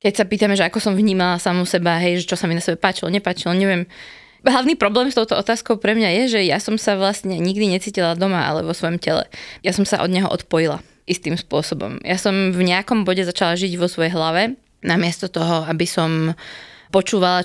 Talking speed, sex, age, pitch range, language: 210 wpm, female, 20-39, 175-205 Hz, Slovak